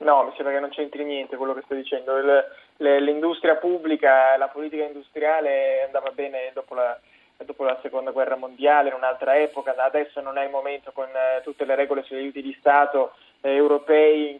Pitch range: 140-160 Hz